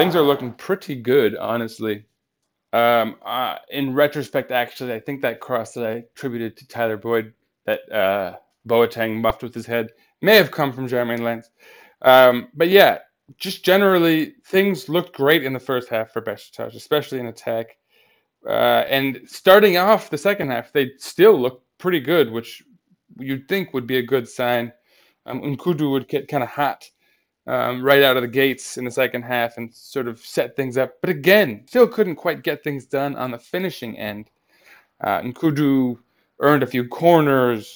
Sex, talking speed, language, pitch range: male, 180 wpm, English, 120-155 Hz